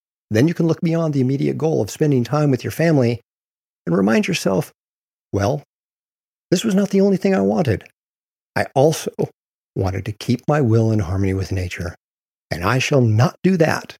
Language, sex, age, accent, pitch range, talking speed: English, male, 50-69, American, 105-155 Hz, 185 wpm